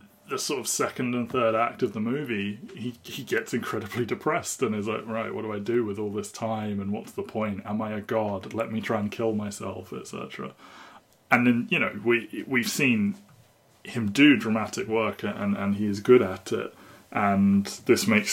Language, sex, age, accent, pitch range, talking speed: English, male, 20-39, British, 100-125 Hz, 210 wpm